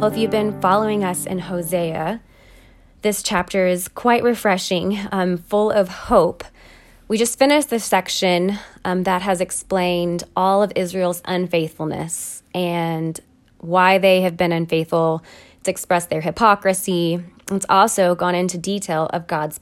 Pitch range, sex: 175-210 Hz, female